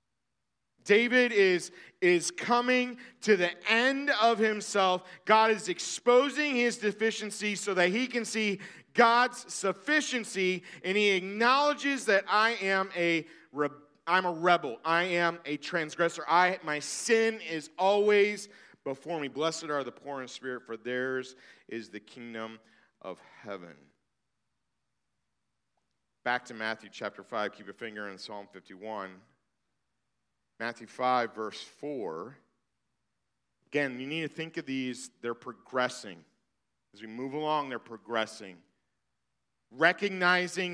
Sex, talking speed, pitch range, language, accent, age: male, 125 wpm, 140-210 Hz, English, American, 40-59